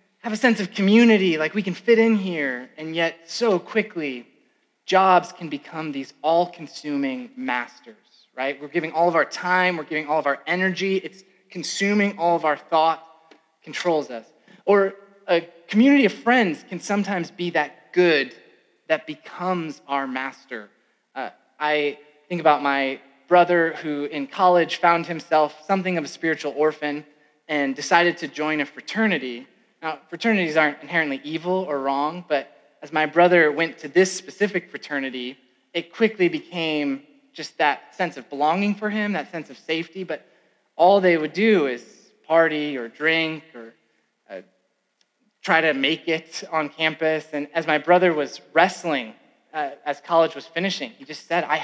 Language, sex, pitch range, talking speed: English, male, 150-185 Hz, 165 wpm